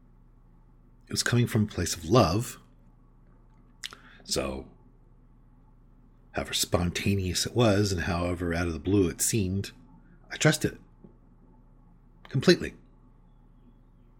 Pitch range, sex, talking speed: 75-120 Hz, male, 105 wpm